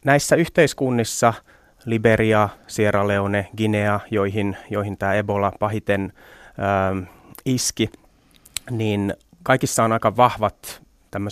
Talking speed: 95 wpm